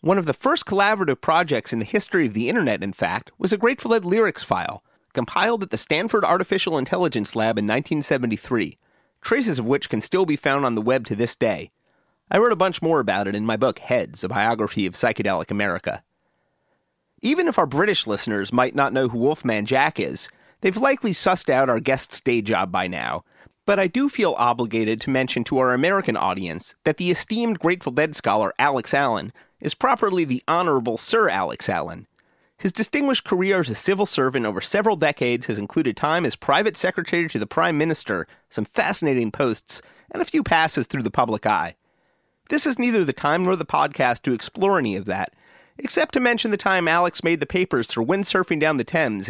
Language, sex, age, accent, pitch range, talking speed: English, male, 30-49, American, 125-200 Hz, 200 wpm